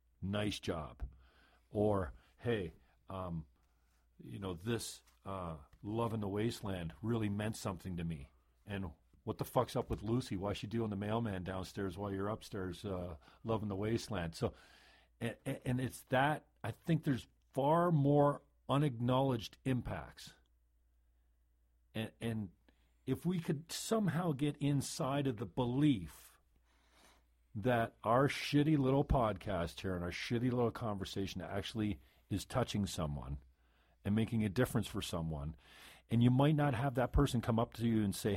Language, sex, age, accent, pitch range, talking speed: English, male, 50-69, American, 85-125 Hz, 150 wpm